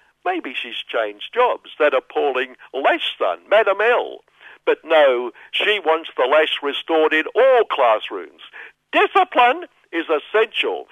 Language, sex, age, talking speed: English, male, 60-79, 125 wpm